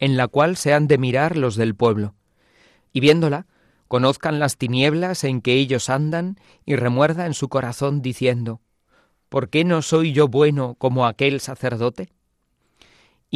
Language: Spanish